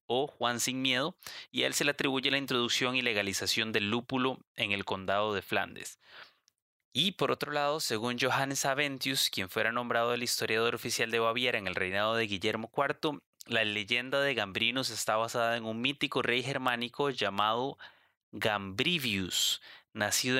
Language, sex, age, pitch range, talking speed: Spanish, male, 20-39, 110-130 Hz, 165 wpm